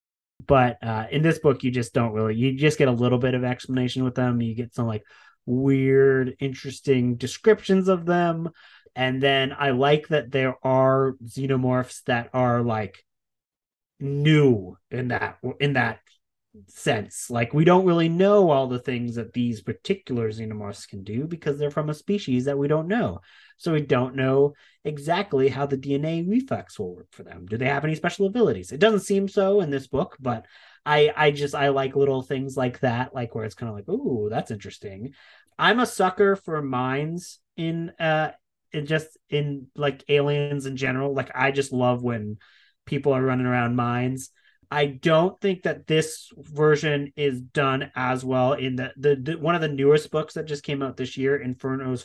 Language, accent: English, American